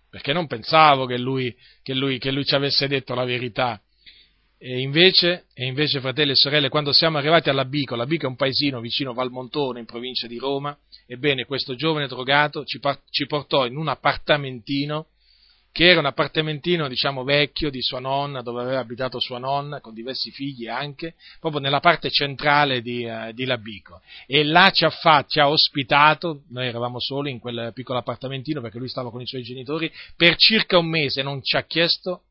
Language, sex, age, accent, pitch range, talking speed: Italian, male, 40-59, native, 125-155 Hz, 195 wpm